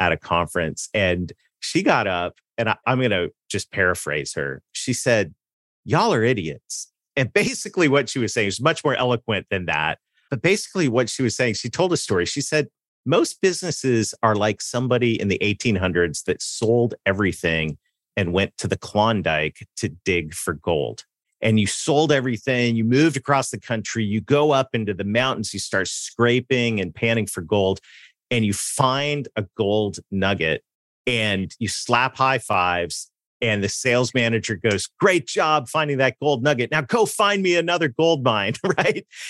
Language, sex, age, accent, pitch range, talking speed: English, male, 40-59, American, 105-145 Hz, 175 wpm